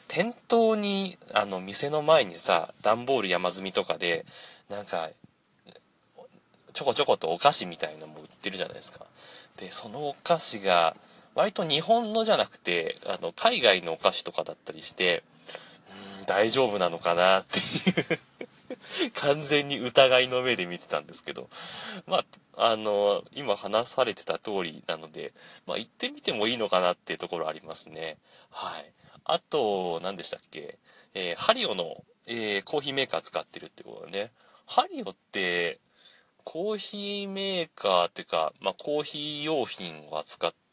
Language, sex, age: Japanese, male, 30-49